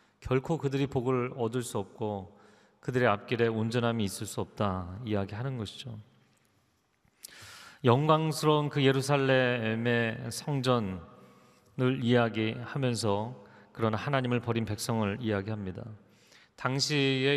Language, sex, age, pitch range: Korean, male, 40-59, 110-135 Hz